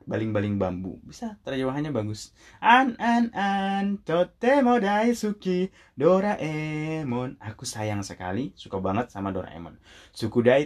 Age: 20-39